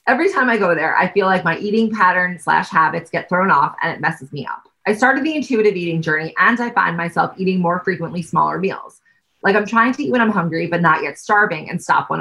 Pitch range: 165-225 Hz